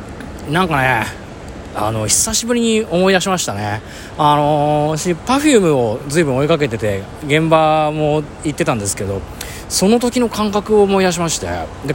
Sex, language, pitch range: male, Japanese, 105-170 Hz